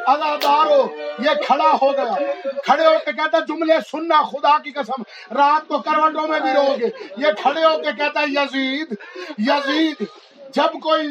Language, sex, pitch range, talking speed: Urdu, male, 290-335 Hz, 135 wpm